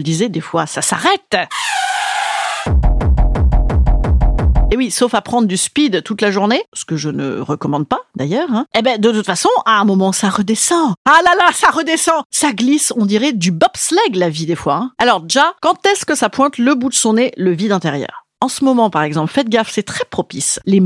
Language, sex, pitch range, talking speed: French, female, 190-320 Hz, 215 wpm